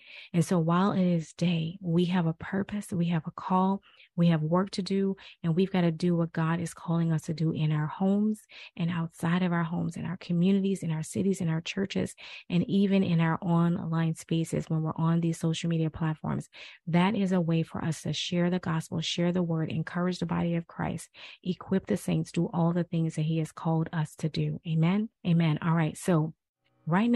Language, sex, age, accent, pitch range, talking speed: English, female, 30-49, American, 160-185 Hz, 220 wpm